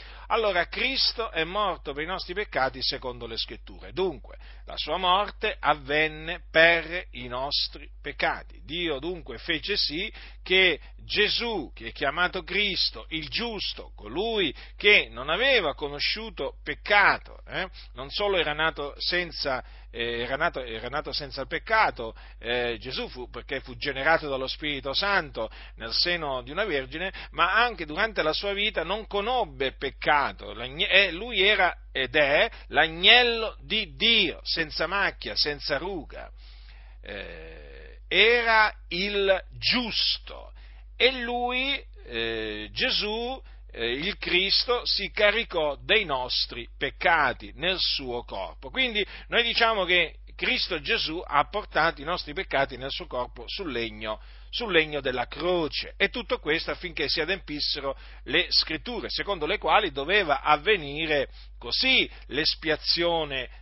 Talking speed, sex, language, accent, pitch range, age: 130 wpm, male, Italian, native, 130-200 Hz, 40-59